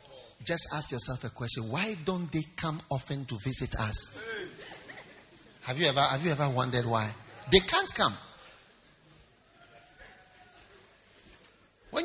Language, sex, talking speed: English, male, 125 wpm